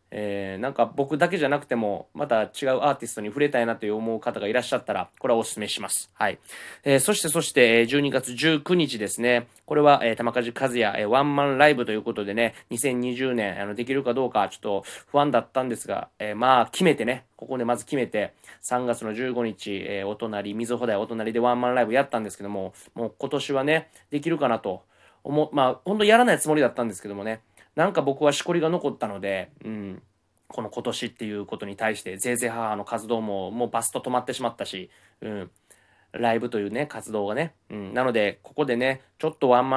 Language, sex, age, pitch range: Japanese, male, 20-39, 110-140 Hz